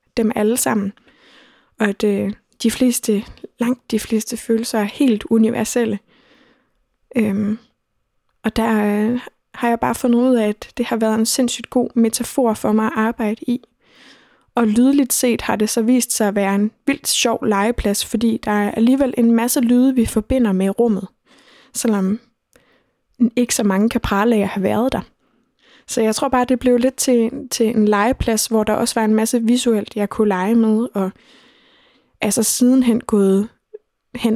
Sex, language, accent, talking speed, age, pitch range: female, Danish, native, 170 wpm, 20-39, 210-245 Hz